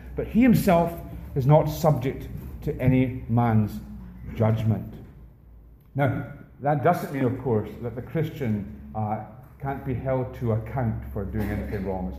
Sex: male